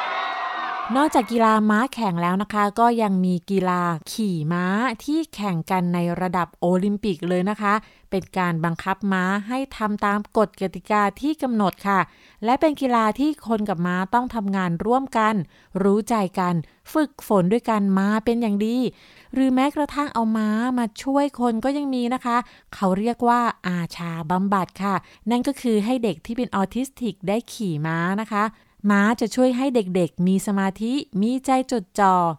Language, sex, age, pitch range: Thai, female, 20-39, 190-245 Hz